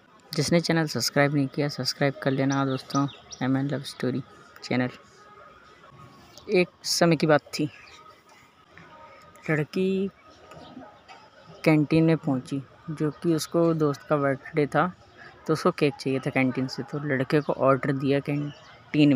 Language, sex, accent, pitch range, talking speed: Hindi, female, native, 135-160 Hz, 135 wpm